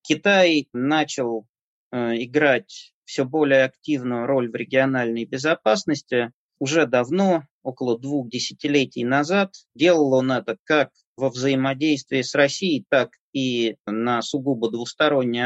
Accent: native